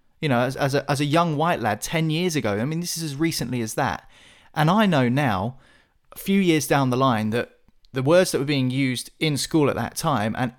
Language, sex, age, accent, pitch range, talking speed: English, male, 30-49, British, 130-175 Hz, 250 wpm